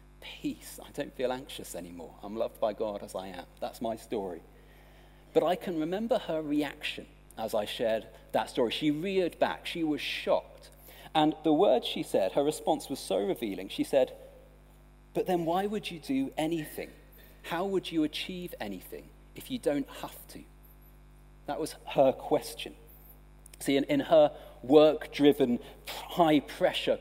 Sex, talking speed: male, 160 wpm